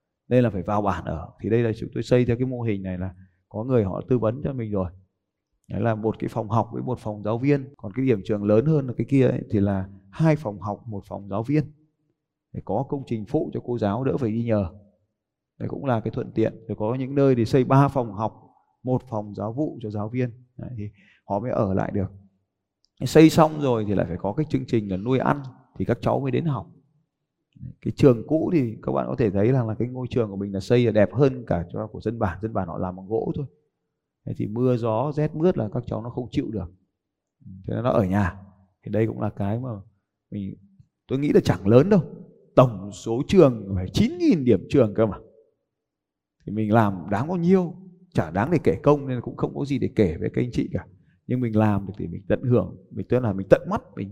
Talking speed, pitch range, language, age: 250 wpm, 100-135 Hz, Vietnamese, 20-39